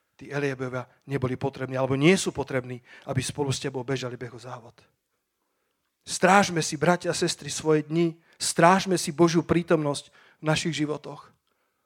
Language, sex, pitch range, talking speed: Slovak, male, 155-190 Hz, 145 wpm